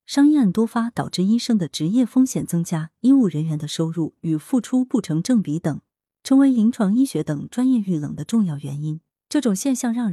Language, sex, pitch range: Chinese, female, 160-240 Hz